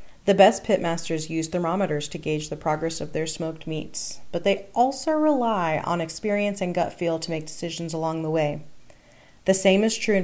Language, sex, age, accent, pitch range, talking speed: English, female, 30-49, American, 165-205 Hz, 195 wpm